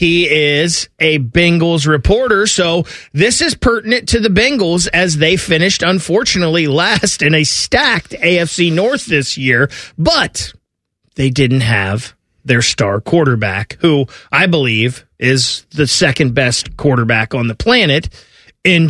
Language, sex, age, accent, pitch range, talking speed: English, male, 30-49, American, 130-170 Hz, 135 wpm